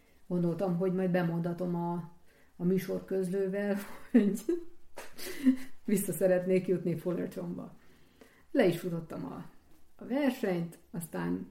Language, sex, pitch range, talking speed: Hungarian, female, 165-195 Hz, 105 wpm